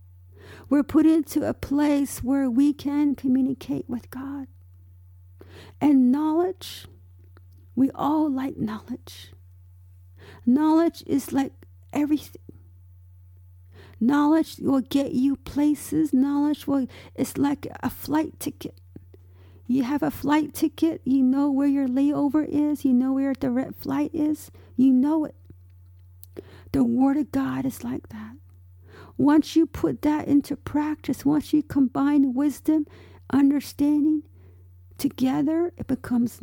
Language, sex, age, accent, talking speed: English, female, 50-69, American, 120 wpm